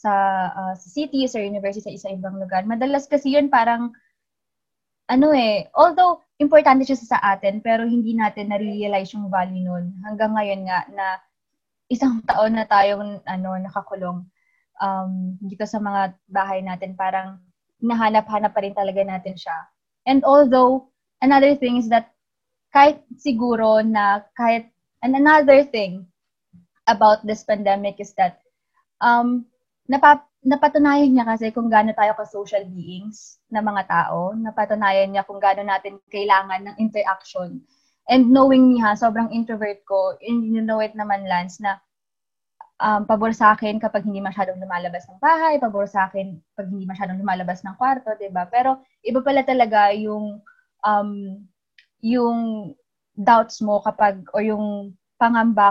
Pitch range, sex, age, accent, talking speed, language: 195-240 Hz, female, 20-39, Filipino, 145 wpm, English